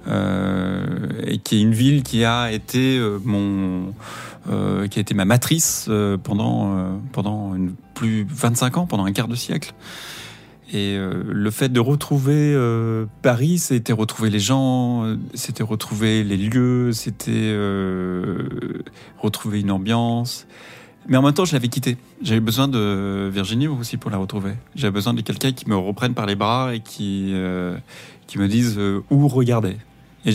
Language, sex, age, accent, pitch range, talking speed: French, male, 30-49, French, 100-130 Hz, 170 wpm